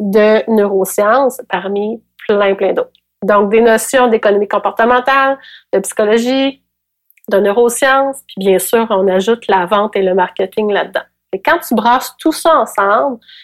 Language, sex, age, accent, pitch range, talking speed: French, female, 30-49, Canadian, 195-255 Hz, 145 wpm